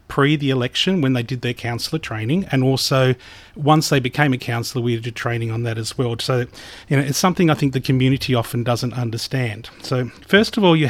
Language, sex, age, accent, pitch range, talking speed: English, male, 30-49, Australian, 120-145 Hz, 220 wpm